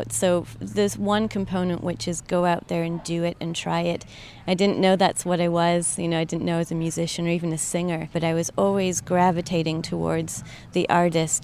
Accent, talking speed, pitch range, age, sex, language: American, 220 wpm, 160-180 Hz, 30-49, female, English